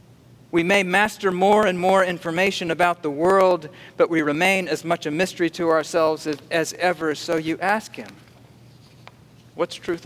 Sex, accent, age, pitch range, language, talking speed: male, American, 50-69, 140-180 Hz, English, 165 wpm